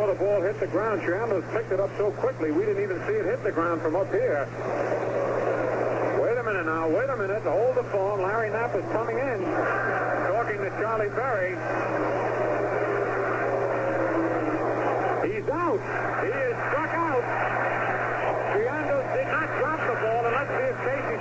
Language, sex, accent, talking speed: English, male, American, 160 wpm